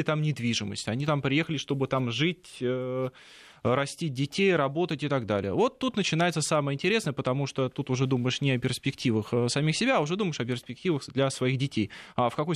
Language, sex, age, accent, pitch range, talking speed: Russian, male, 20-39, native, 115-155 Hz, 190 wpm